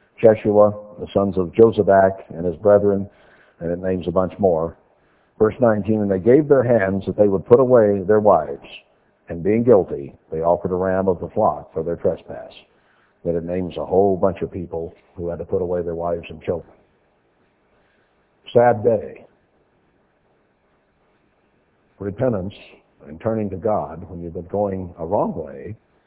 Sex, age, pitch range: male, 60-79, 90-105 Hz